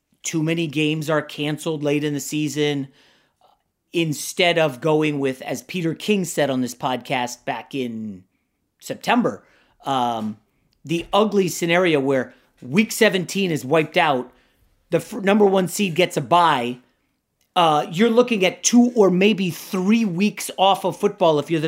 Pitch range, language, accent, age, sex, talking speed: 150-210 Hz, English, American, 30-49, male, 150 wpm